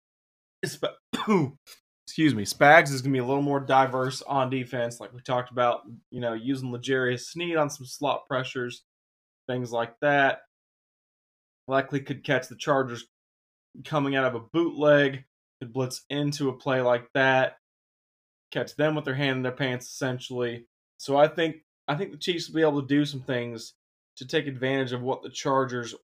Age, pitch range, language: 20-39, 120-140 Hz, English